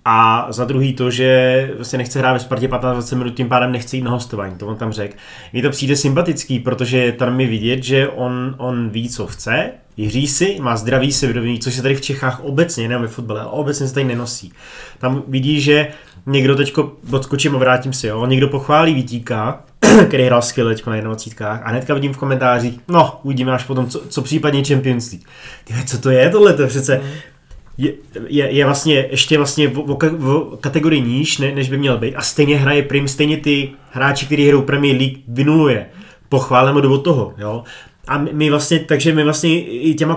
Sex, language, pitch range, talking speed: male, Czech, 125-150 Hz, 200 wpm